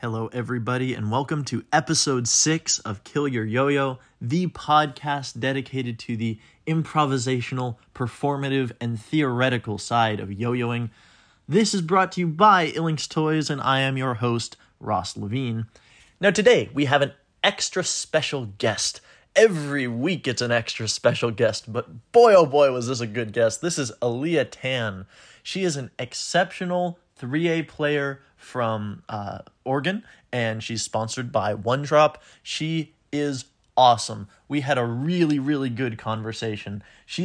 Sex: male